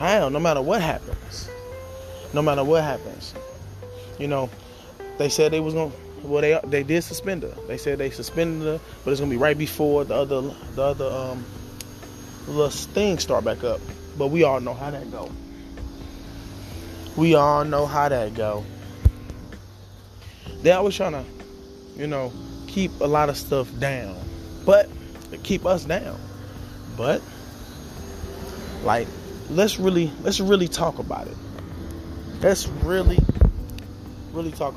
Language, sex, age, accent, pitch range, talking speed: English, male, 20-39, American, 95-150 Hz, 155 wpm